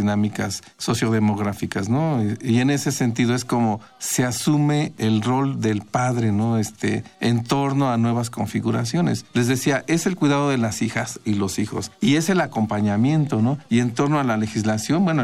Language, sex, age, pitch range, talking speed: Spanish, male, 50-69, 110-145 Hz, 175 wpm